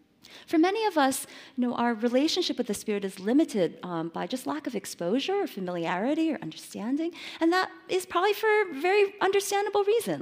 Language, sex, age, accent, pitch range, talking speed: English, female, 30-49, American, 215-330 Hz, 175 wpm